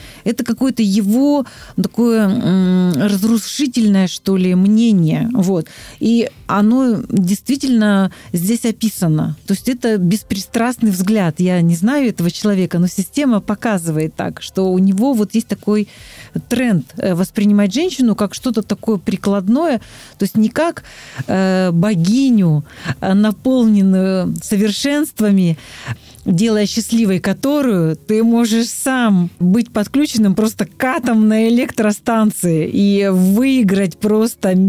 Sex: female